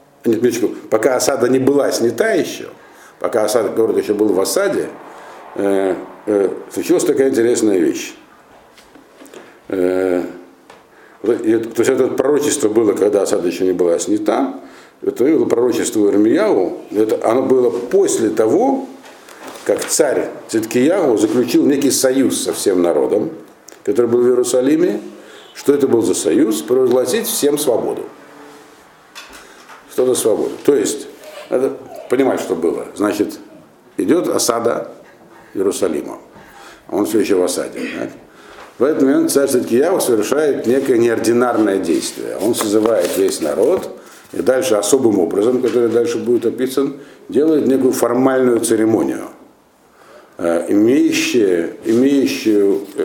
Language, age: Russian, 60-79